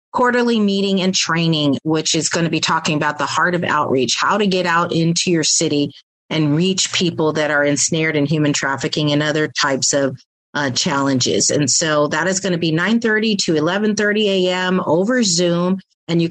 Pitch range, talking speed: 150-180 Hz, 190 wpm